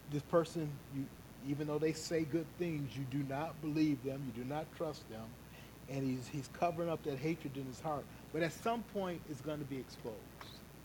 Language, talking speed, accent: English, 210 wpm, American